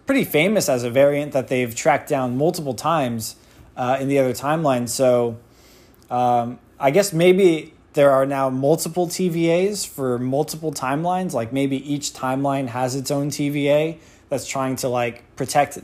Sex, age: male, 20-39